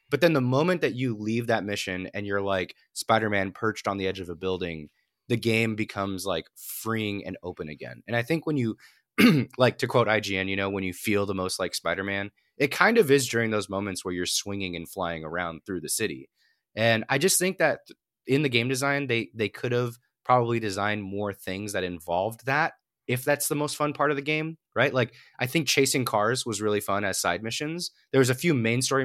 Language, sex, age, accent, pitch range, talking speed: English, male, 20-39, American, 100-135 Hz, 225 wpm